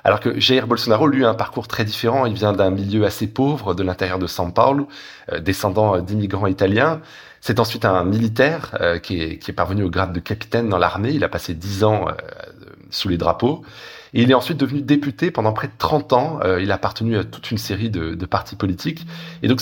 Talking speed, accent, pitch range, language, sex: 230 wpm, French, 100-130 Hz, French, male